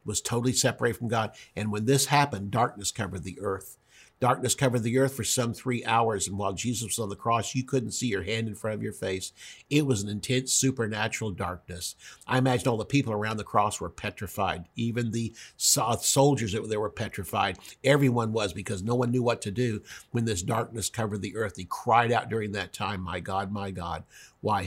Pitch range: 100-120 Hz